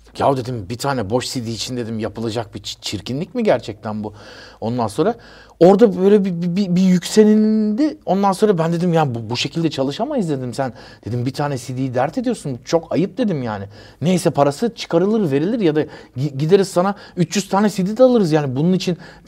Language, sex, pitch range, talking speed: Turkish, male, 125-185 Hz, 185 wpm